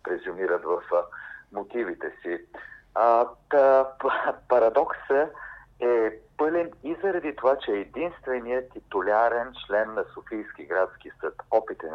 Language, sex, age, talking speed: English, male, 50-69, 115 wpm